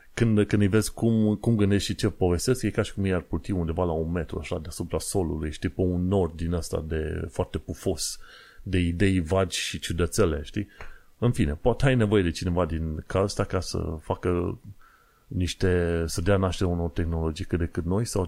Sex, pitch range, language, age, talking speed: male, 85-105 Hz, Romanian, 30-49, 205 wpm